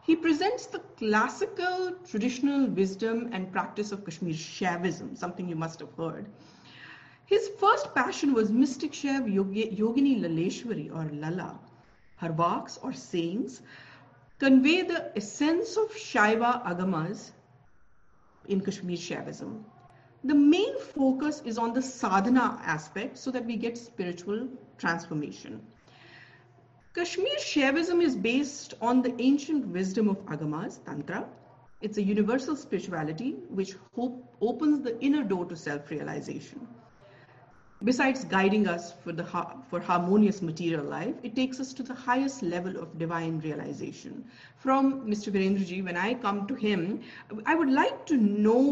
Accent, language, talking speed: Indian, English, 135 wpm